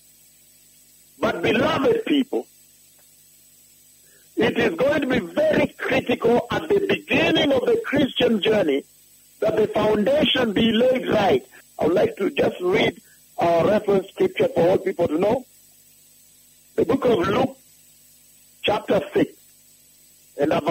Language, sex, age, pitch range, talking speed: English, male, 60-79, 215-310 Hz, 130 wpm